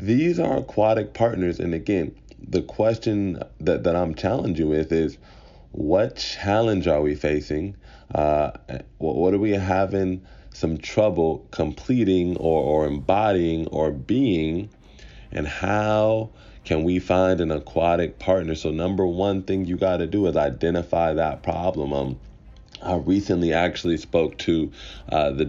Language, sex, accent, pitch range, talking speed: English, male, American, 80-95 Hz, 145 wpm